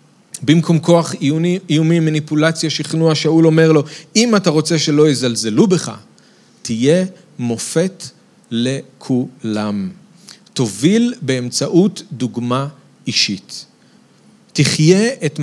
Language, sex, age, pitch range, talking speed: Hebrew, male, 40-59, 130-185 Hz, 95 wpm